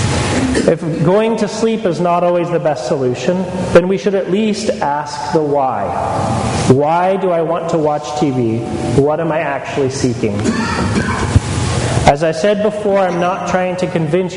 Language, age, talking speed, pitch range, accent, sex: English, 30-49, 165 wpm, 130-190 Hz, American, male